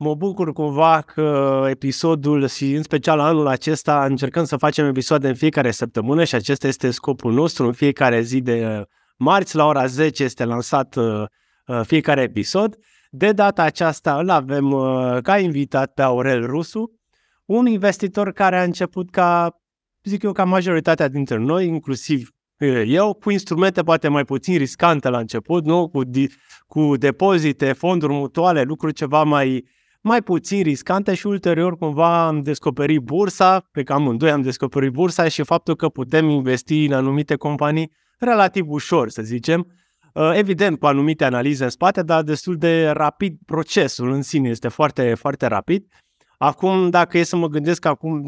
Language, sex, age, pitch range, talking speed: Romanian, male, 20-39, 135-170 Hz, 160 wpm